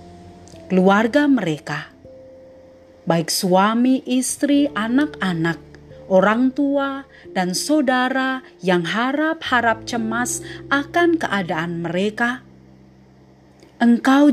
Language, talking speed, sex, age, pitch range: Indonesian, 70 wpm, female, 40-59, 155-255 Hz